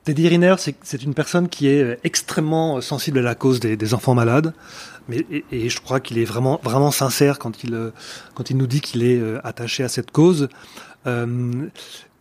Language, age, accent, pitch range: French, 30-49, French, 125-150 Hz